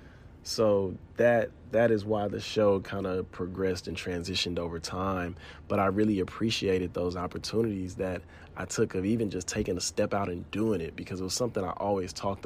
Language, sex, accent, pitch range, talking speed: English, male, American, 90-105 Hz, 195 wpm